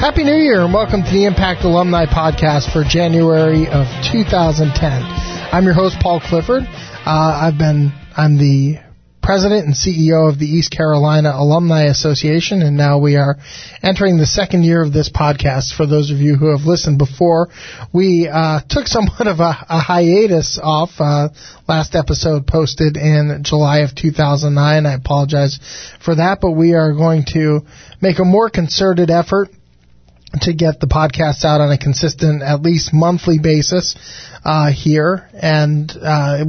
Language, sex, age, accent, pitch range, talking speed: English, male, 20-39, American, 145-170 Hz, 165 wpm